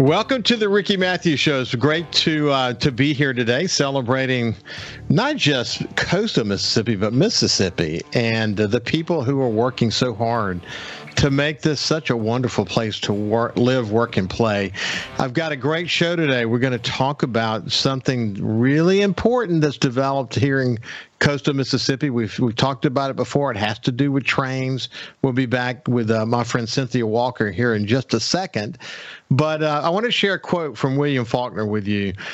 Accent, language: American, English